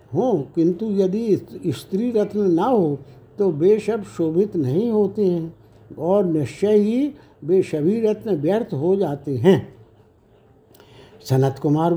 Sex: male